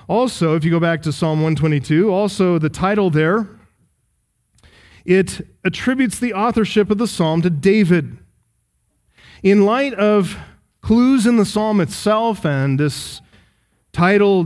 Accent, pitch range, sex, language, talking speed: American, 150-185 Hz, male, English, 135 wpm